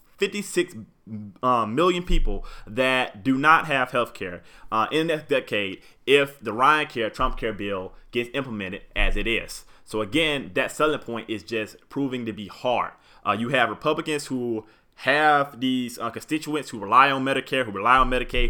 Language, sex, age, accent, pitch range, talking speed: English, male, 20-39, American, 115-150 Hz, 175 wpm